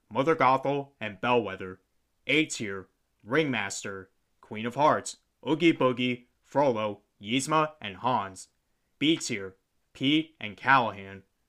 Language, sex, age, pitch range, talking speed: English, male, 20-39, 100-140 Hz, 110 wpm